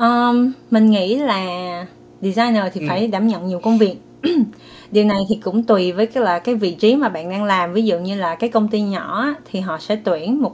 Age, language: 20-39, Vietnamese